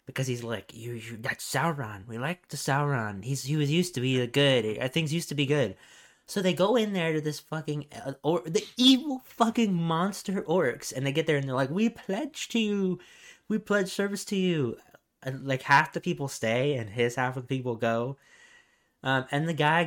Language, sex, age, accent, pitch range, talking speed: English, male, 20-39, American, 130-200 Hz, 215 wpm